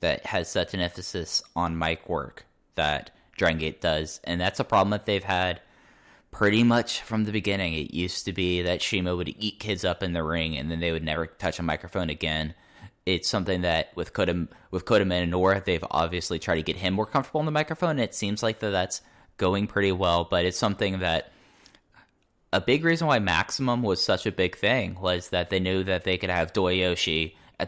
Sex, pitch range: male, 85-100 Hz